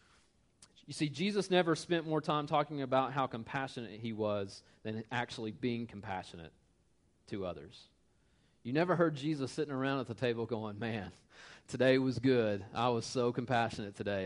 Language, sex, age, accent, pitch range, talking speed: English, male, 30-49, American, 110-145 Hz, 160 wpm